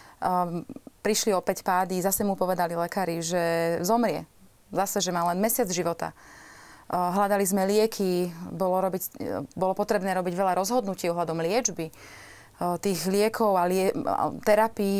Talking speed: 140 wpm